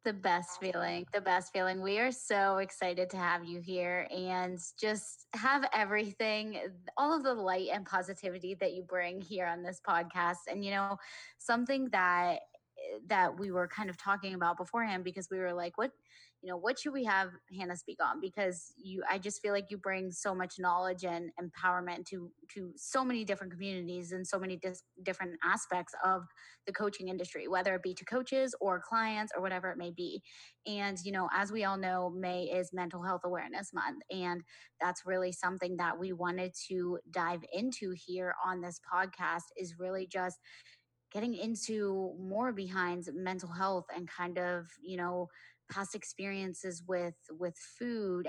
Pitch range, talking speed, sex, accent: 180-200 Hz, 180 wpm, female, American